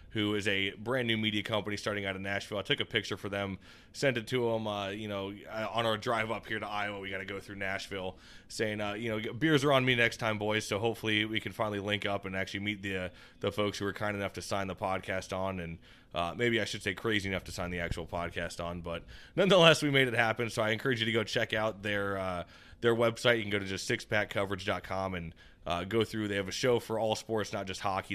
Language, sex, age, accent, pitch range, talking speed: English, male, 20-39, American, 95-115 Hz, 260 wpm